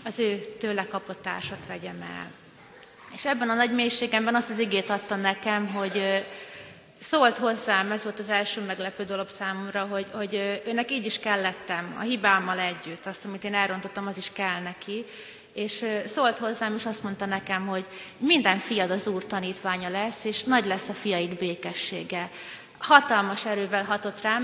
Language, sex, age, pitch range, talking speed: Hungarian, female, 30-49, 200-235 Hz, 160 wpm